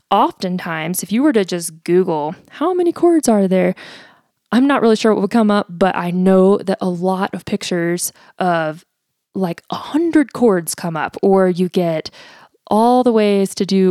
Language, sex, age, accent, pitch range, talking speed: English, female, 20-39, American, 175-210 Hz, 185 wpm